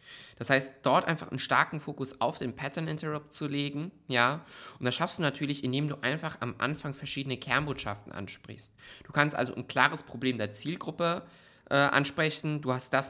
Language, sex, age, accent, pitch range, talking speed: German, male, 20-39, German, 120-150 Hz, 185 wpm